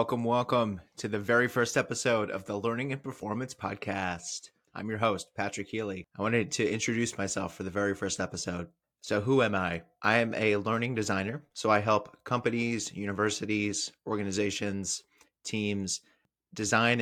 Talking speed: 160 wpm